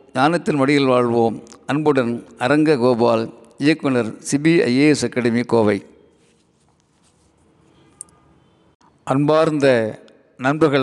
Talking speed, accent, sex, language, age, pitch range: 60 wpm, native, male, Tamil, 50-69, 135-165 Hz